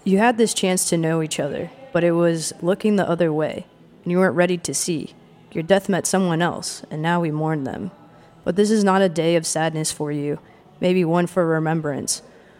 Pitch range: 160-185 Hz